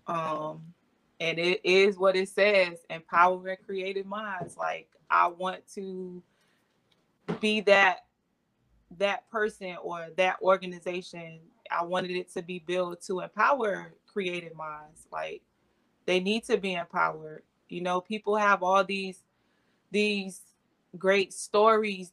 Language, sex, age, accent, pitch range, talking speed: English, female, 20-39, American, 175-200 Hz, 125 wpm